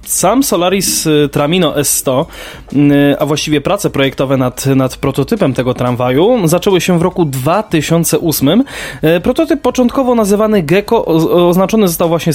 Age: 20-39